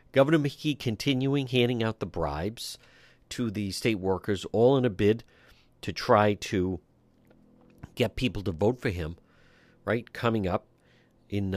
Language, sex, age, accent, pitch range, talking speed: English, male, 50-69, American, 100-135 Hz, 145 wpm